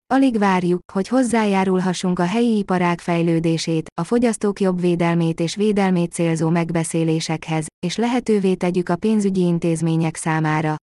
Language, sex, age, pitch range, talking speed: Hungarian, female, 20-39, 165-200 Hz, 125 wpm